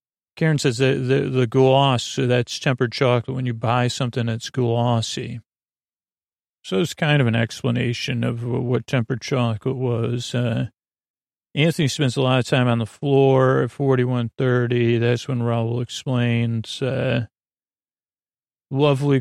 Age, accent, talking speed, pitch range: 40-59, American, 140 wpm, 120-130 Hz